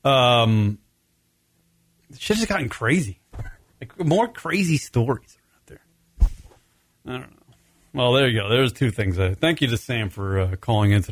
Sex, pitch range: male, 95-120 Hz